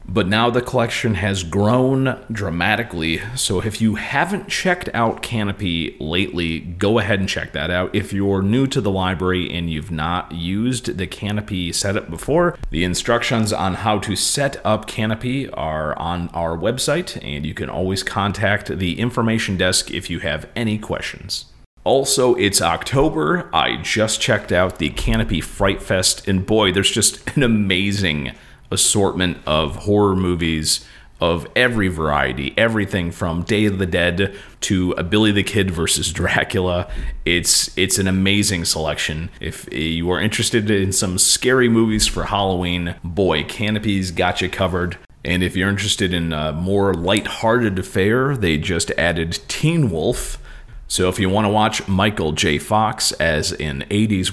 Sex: male